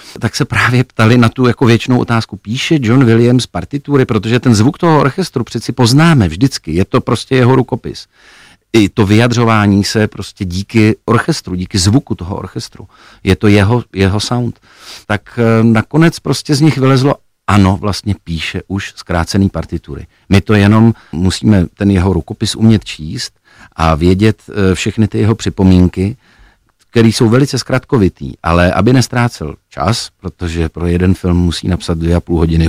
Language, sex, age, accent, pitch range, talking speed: Czech, male, 50-69, native, 95-115 Hz, 160 wpm